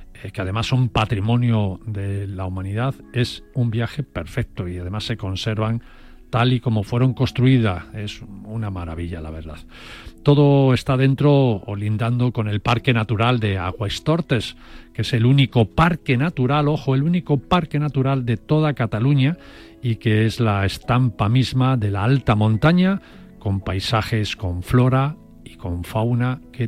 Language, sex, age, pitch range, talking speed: Spanish, male, 40-59, 100-130 Hz, 150 wpm